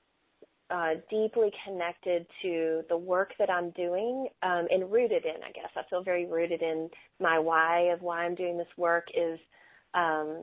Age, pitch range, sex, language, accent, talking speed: 30-49, 170-200 Hz, female, English, American, 175 wpm